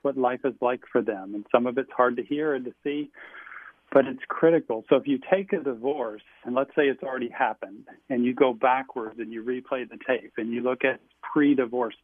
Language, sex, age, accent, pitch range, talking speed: English, male, 40-59, American, 120-140 Hz, 225 wpm